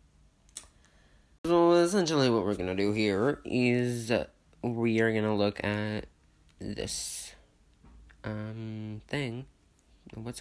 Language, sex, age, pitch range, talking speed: English, male, 20-39, 95-135 Hz, 110 wpm